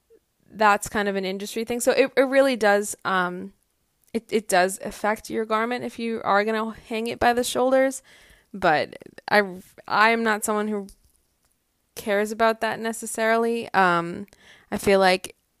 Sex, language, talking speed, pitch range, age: female, English, 160 wpm, 185-220 Hz, 20-39